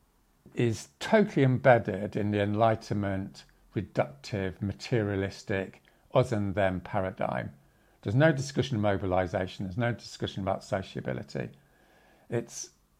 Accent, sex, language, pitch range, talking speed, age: British, male, English, 95-130 Hz, 95 wpm, 50-69